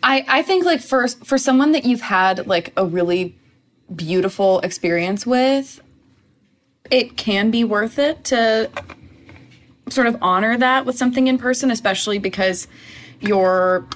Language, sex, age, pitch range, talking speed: English, female, 20-39, 185-255 Hz, 140 wpm